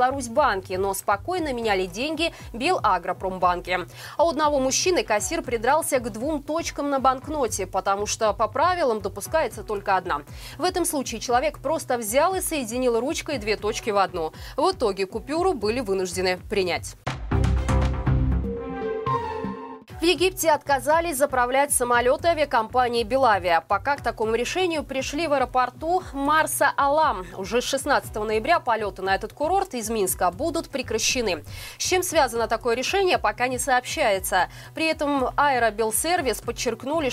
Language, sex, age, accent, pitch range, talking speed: Russian, female, 20-39, native, 210-300 Hz, 135 wpm